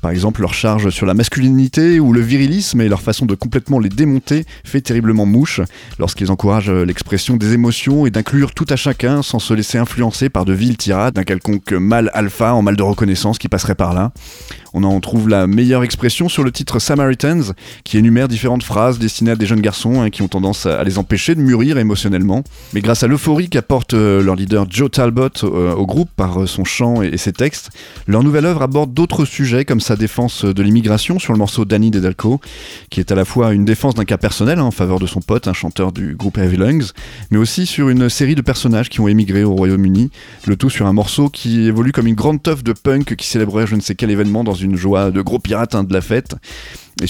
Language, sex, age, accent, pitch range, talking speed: French, male, 30-49, French, 100-130 Hz, 225 wpm